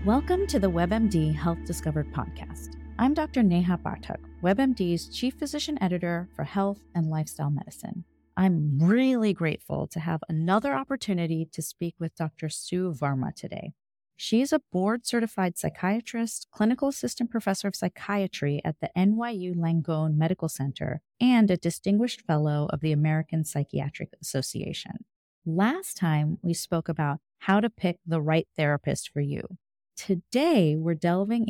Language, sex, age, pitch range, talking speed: English, female, 30-49, 160-215 Hz, 145 wpm